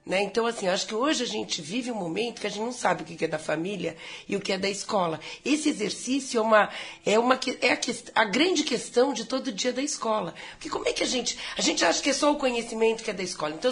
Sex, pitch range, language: female, 185-255 Hz, Portuguese